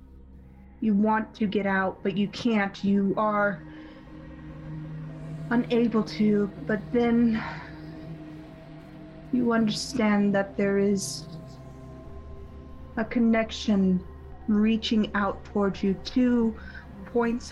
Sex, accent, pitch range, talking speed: female, American, 160-215 Hz, 95 wpm